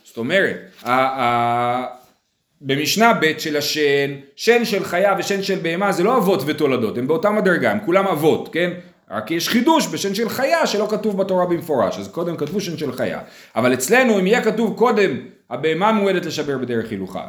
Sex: male